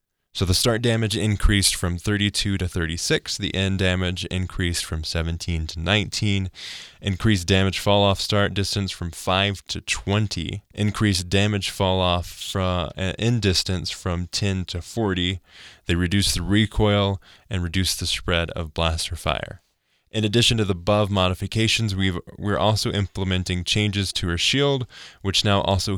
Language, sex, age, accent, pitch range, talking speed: English, male, 10-29, American, 90-105 Hz, 145 wpm